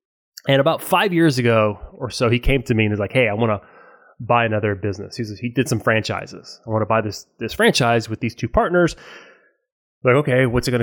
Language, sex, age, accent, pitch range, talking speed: English, male, 20-39, American, 110-140 Hz, 245 wpm